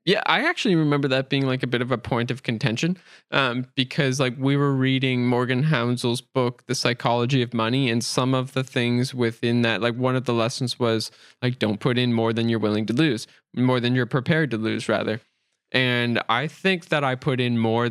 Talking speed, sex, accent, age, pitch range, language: 220 wpm, male, American, 10-29, 115-135 Hz, English